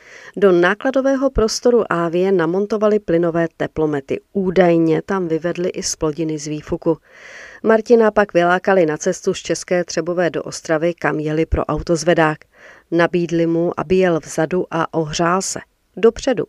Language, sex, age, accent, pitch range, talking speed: Czech, female, 40-59, native, 160-200 Hz, 135 wpm